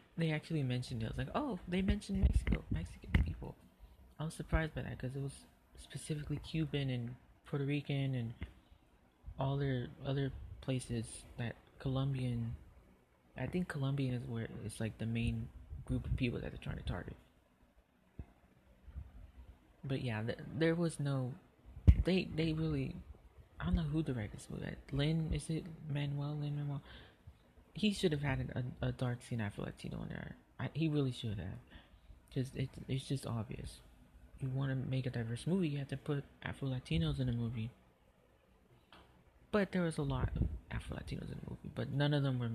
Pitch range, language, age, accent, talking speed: 115-155 Hz, English, 30-49, American, 175 wpm